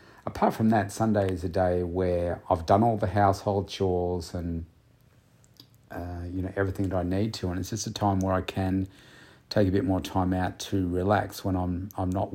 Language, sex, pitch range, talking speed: English, male, 95-105 Hz, 210 wpm